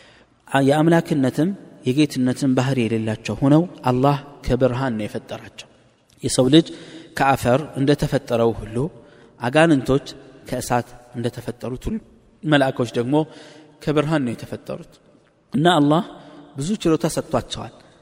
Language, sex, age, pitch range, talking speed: Amharic, male, 20-39, 115-145 Hz, 100 wpm